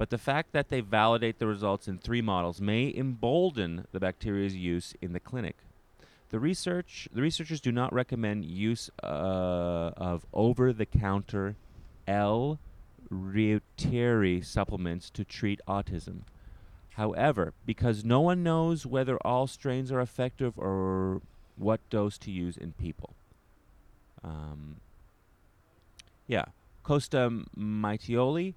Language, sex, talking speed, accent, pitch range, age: English, male, 120 wpm, American, 90-115 Hz, 30-49